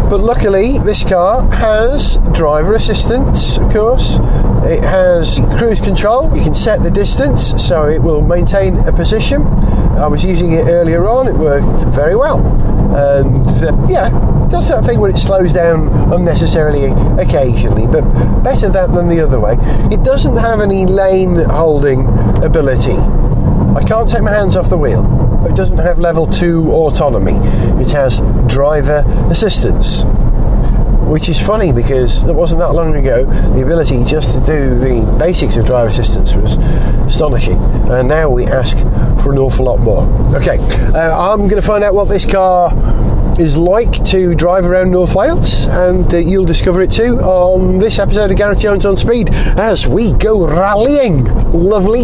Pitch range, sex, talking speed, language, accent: 125-185 Hz, male, 165 wpm, English, British